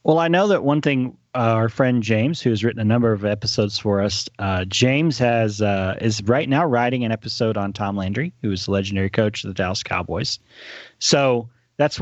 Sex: male